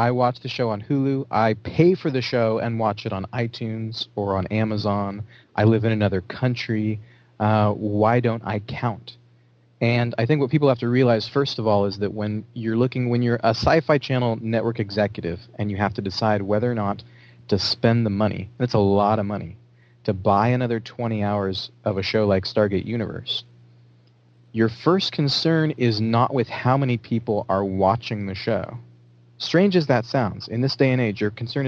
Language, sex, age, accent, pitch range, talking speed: English, male, 30-49, American, 100-120 Hz, 195 wpm